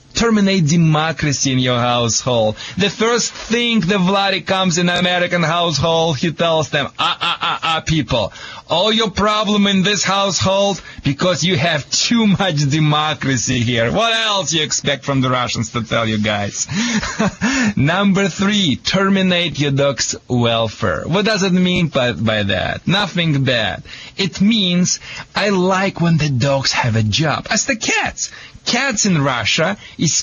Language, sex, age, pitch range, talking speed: English, male, 30-49, 140-210 Hz, 155 wpm